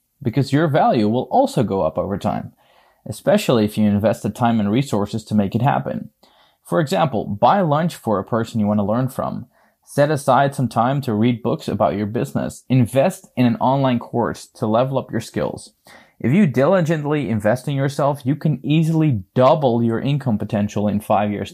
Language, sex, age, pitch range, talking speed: English, male, 20-39, 110-140 Hz, 190 wpm